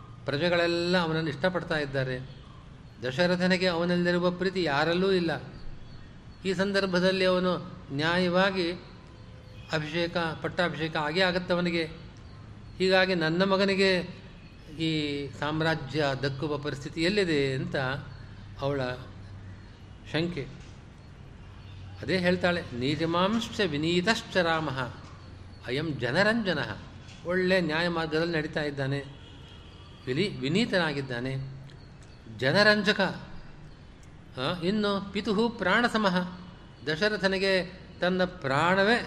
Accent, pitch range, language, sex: native, 135-180 Hz, Kannada, male